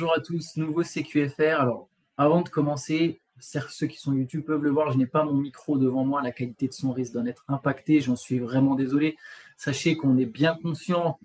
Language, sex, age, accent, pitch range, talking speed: French, male, 20-39, French, 130-160 Hz, 220 wpm